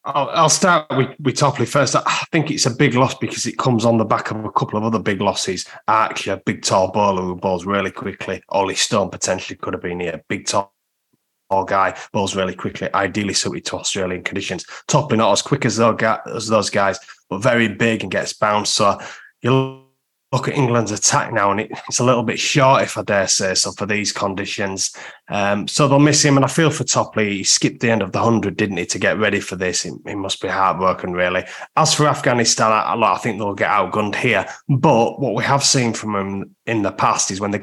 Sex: male